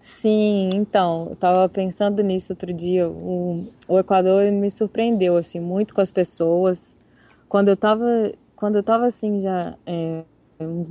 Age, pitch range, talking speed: 20-39, 175-205 Hz, 155 wpm